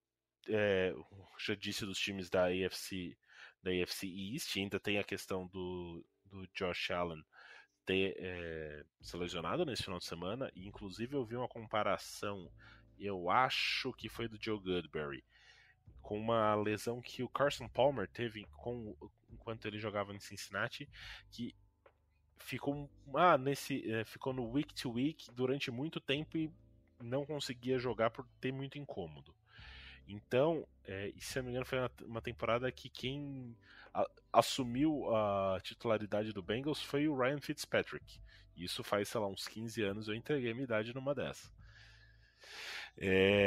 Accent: Brazilian